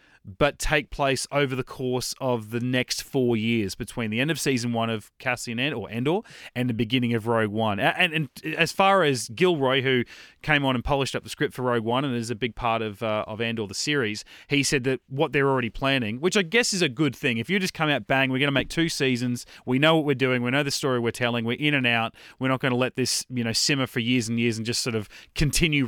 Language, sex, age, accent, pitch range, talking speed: English, male, 30-49, Australian, 120-155 Hz, 265 wpm